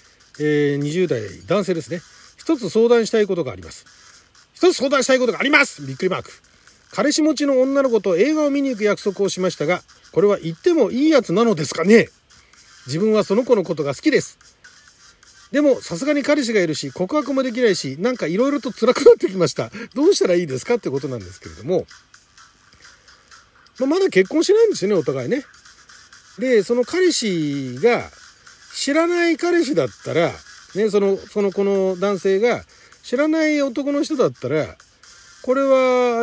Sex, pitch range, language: male, 165-275 Hz, Japanese